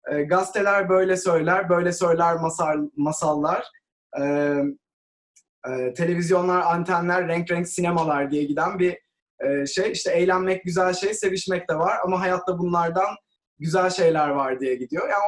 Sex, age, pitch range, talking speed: male, 20-39, 155-190 Hz, 125 wpm